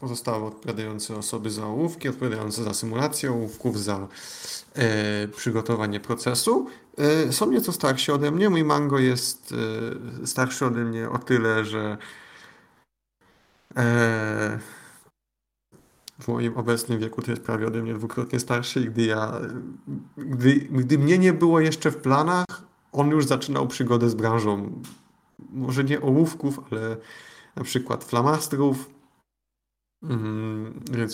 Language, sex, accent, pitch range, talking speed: Polish, male, native, 110-140 Hz, 125 wpm